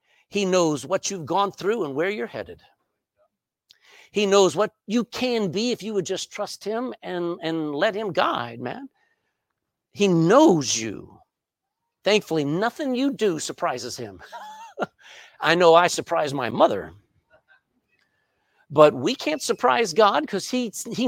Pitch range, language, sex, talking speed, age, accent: 170-245 Hz, English, male, 140 wpm, 50-69, American